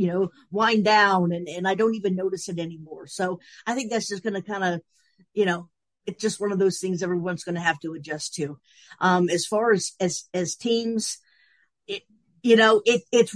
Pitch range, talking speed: 175-200 Hz, 215 wpm